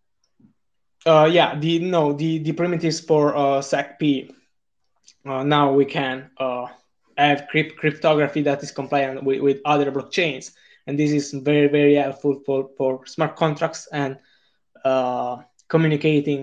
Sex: male